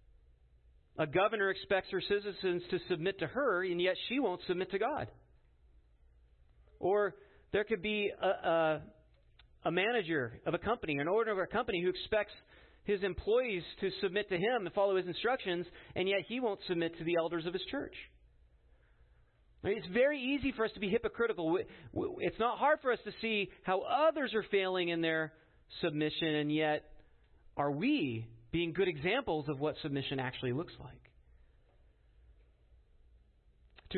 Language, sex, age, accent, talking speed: English, male, 40-59, American, 160 wpm